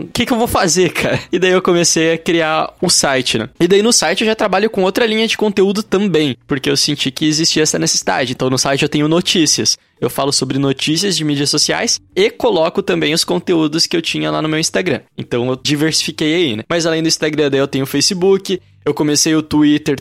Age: 20-39